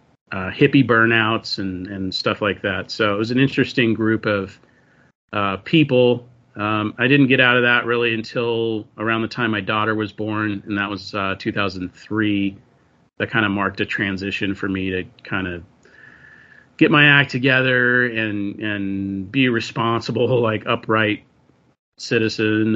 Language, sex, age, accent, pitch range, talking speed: English, male, 40-59, American, 100-125 Hz, 160 wpm